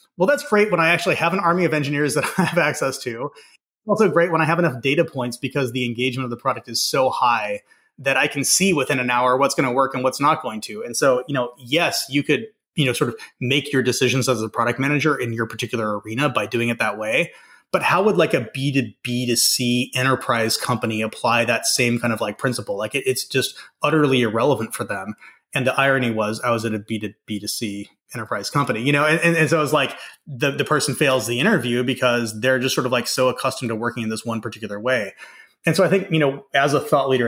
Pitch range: 115-140 Hz